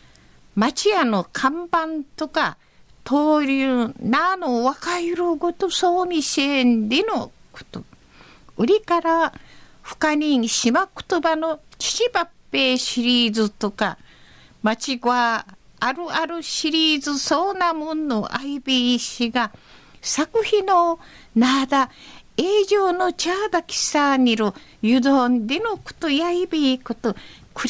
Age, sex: 50-69, female